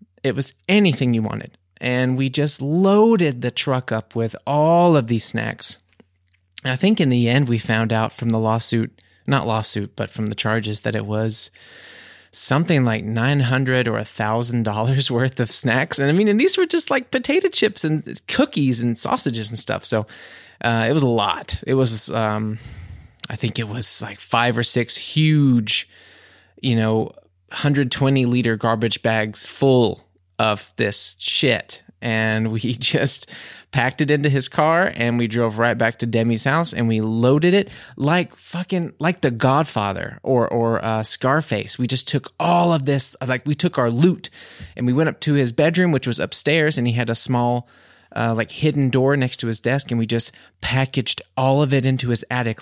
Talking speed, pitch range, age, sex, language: 185 wpm, 115-145 Hz, 20-39, male, English